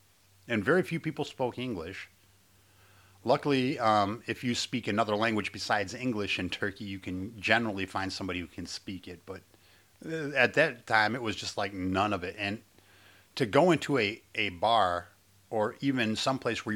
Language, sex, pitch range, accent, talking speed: English, male, 95-120 Hz, American, 170 wpm